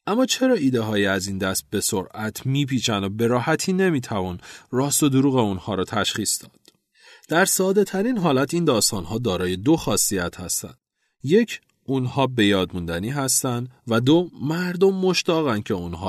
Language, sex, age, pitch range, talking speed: Persian, male, 40-59, 95-150 Hz, 155 wpm